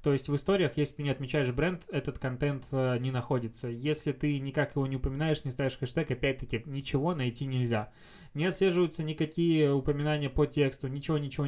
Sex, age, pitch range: male, 20-39, 125-155 Hz